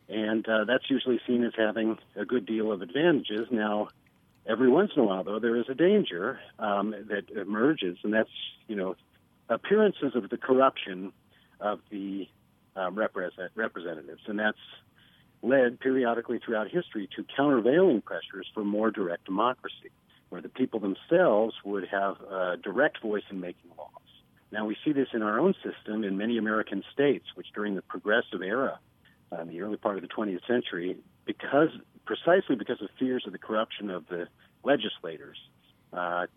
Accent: American